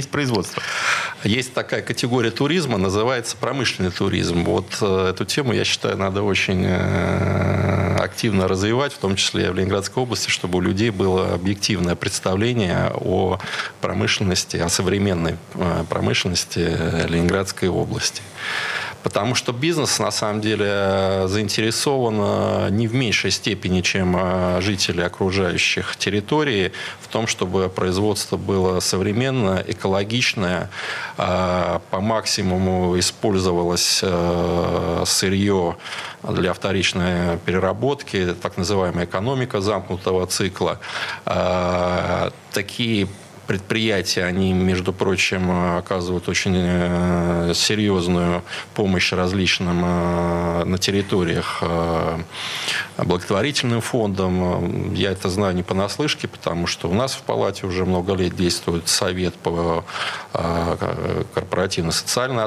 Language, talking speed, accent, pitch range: Russian, 95 wpm, native, 90-105 Hz